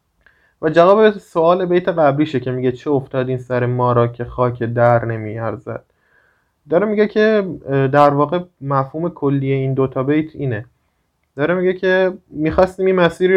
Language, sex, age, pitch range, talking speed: Persian, male, 20-39, 130-170 Hz, 155 wpm